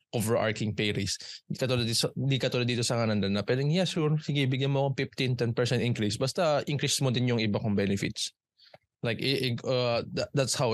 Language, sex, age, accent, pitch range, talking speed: Filipino, male, 20-39, native, 110-135 Hz, 190 wpm